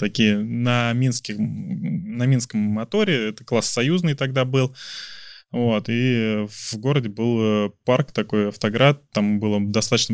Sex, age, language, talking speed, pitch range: male, 20-39, Russian, 130 wpm, 105-130 Hz